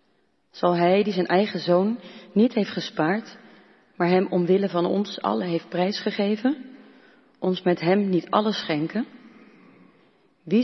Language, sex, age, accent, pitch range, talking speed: Dutch, female, 40-59, Dutch, 175-210 Hz, 135 wpm